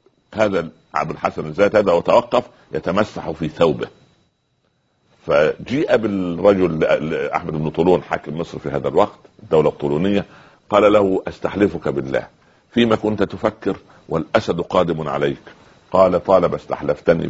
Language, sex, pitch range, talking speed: Arabic, male, 85-110 Hz, 120 wpm